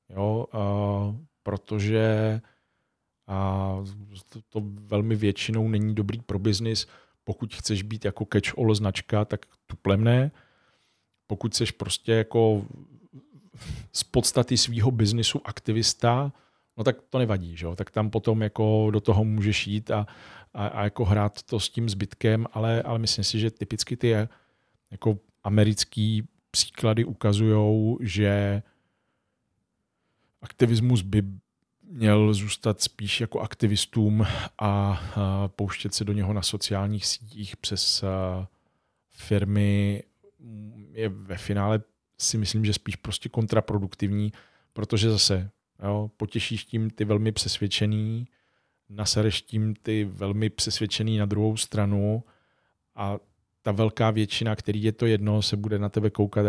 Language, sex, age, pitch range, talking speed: Czech, male, 40-59, 100-110 Hz, 125 wpm